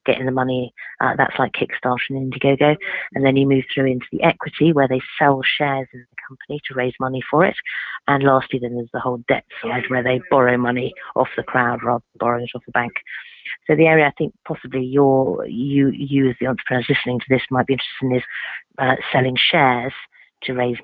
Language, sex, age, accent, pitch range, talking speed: English, female, 40-59, British, 125-140 Hz, 220 wpm